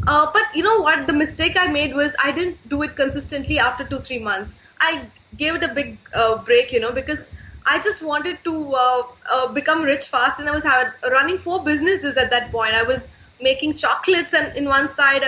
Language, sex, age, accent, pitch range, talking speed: English, female, 20-39, Indian, 275-350 Hz, 215 wpm